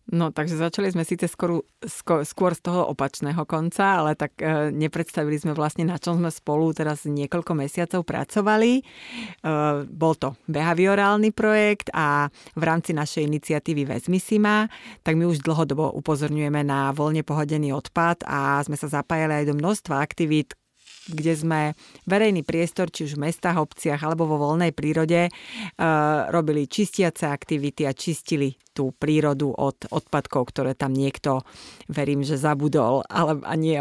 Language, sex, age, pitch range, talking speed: Slovak, female, 30-49, 150-175 Hz, 150 wpm